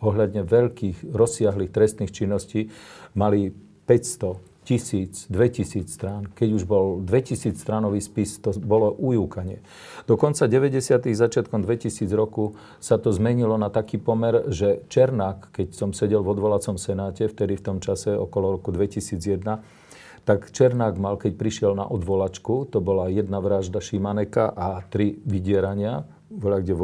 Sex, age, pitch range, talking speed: male, 40-59, 100-110 Hz, 140 wpm